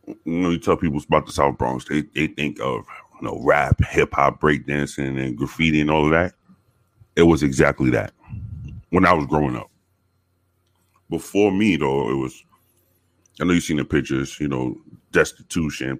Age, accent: 30-49, American